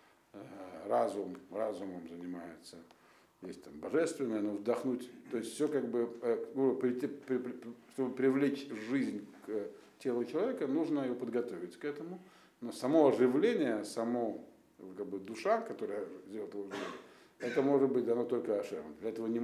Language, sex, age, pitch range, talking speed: Russian, male, 50-69, 110-135 Hz, 135 wpm